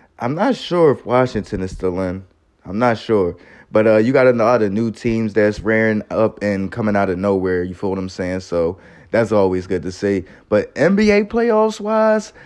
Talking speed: 200 wpm